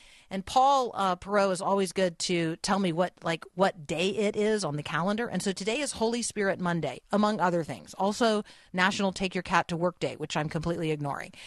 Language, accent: English, American